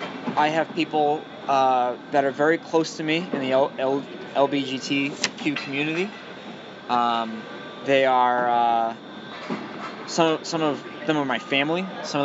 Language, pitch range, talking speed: English, 130-175 Hz, 130 wpm